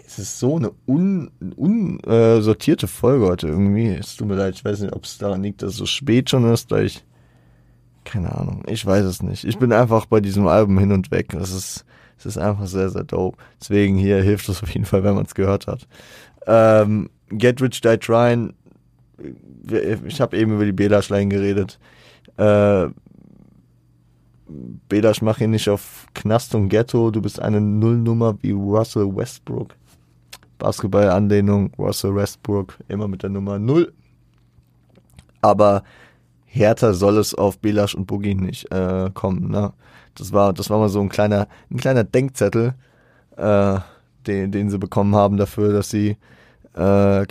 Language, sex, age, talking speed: German, male, 20-39, 165 wpm